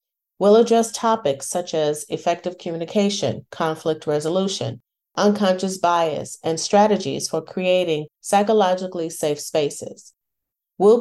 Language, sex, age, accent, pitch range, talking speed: English, female, 40-59, American, 160-200 Hz, 105 wpm